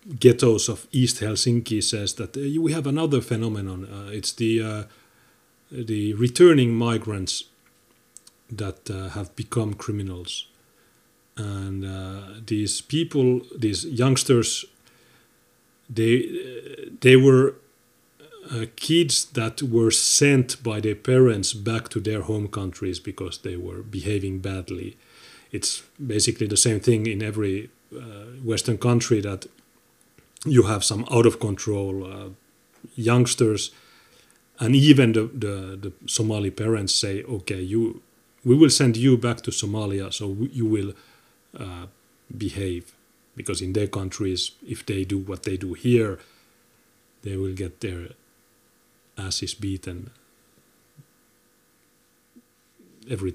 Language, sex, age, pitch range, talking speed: English, male, 40-59, 100-120 Hz, 120 wpm